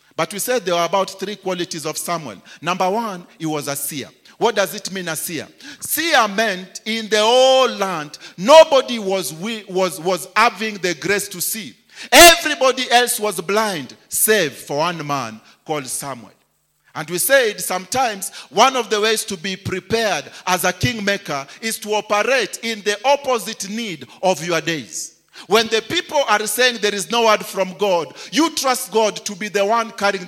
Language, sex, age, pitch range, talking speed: English, male, 40-59, 160-220 Hz, 175 wpm